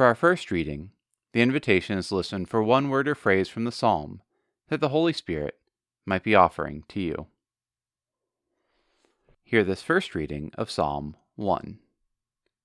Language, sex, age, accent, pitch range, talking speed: English, male, 30-49, American, 90-115 Hz, 155 wpm